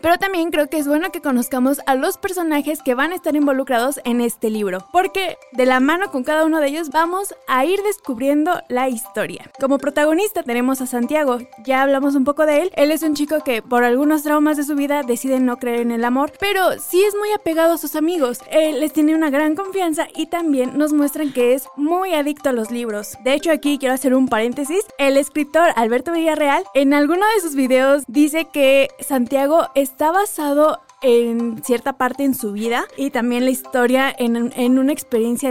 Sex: female